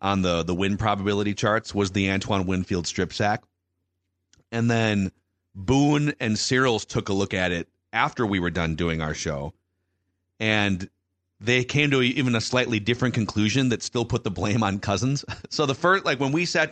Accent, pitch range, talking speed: American, 95-120 Hz, 190 wpm